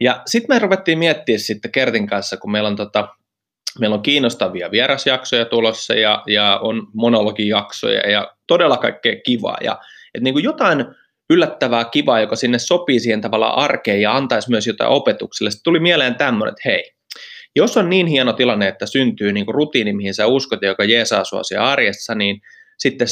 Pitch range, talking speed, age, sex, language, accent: 110-155 Hz, 175 wpm, 20-39, male, Finnish, native